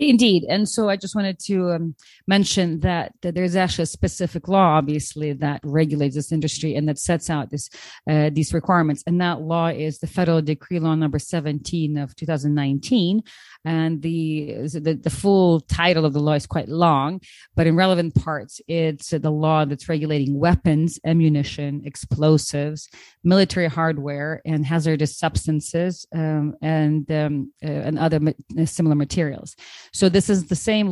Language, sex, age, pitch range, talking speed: English, female, 40-59, 150-175 Hz, 155 wpm